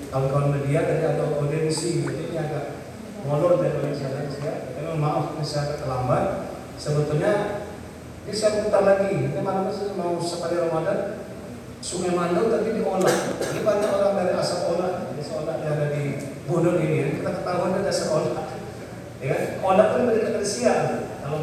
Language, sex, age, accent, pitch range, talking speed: Indonesian, male, 40-59, native, 150-190 Hz, 165 wpm